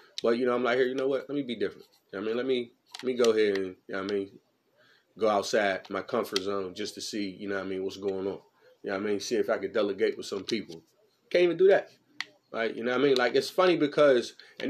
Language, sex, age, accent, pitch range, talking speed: English, male, 30-49, American, 135-200 Hz, 300 wpm